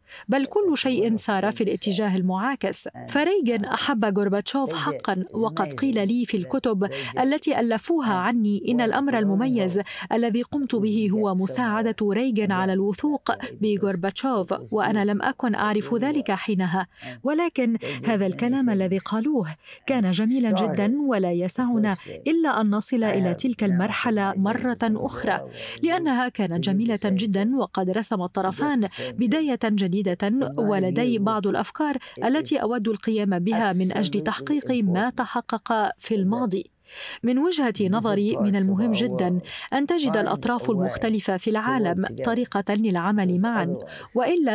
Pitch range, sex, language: 200-250 Hz, female, Arabic